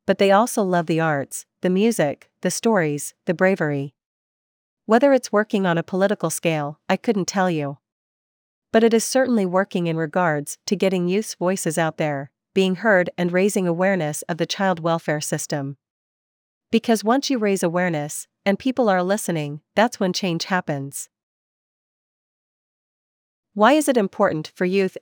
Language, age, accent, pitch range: English, 40-59, American, 160-205 Hz